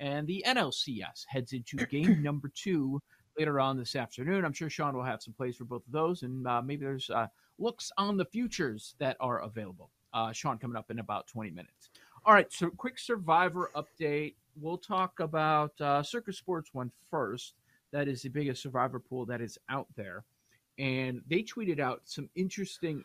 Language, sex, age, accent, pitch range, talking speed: English, male, 40-59, American, 125-165 Hz, 190 wpm